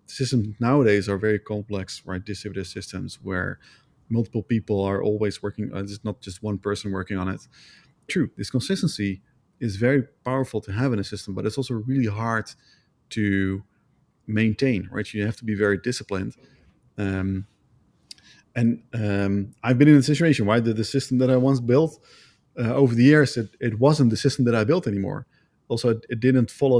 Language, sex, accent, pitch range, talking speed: English, male, Dutch, 100-130 Hz, 180 wpm